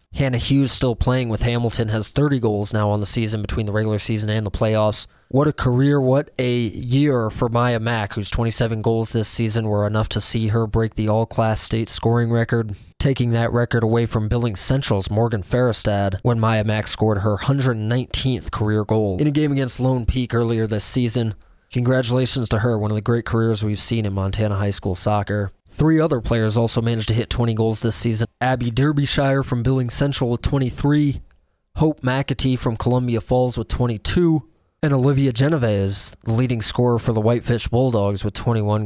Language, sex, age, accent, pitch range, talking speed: English, male, 20-39, American, 110-130 Hz, 190 wpm